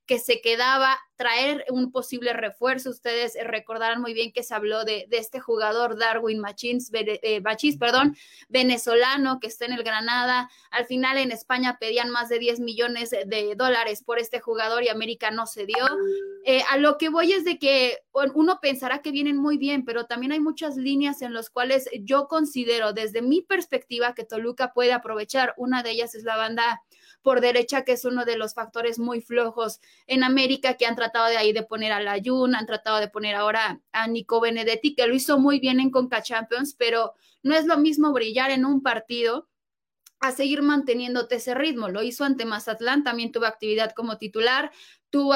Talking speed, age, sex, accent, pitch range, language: 190 wpm, 20-39, female, Mexican, 230-265 Hz, Spanish